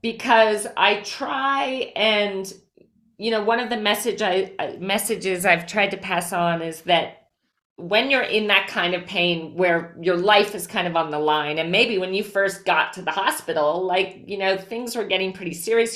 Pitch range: 180-230 Hz